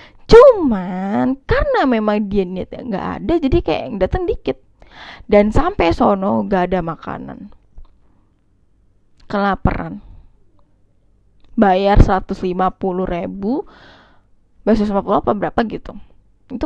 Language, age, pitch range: Indonesian, 10-29, 185-275 Hz